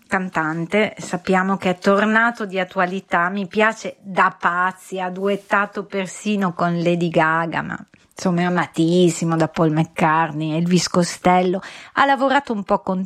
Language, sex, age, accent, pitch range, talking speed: Italian, female, 40-59, native, 175-220 Hz, 145 wpm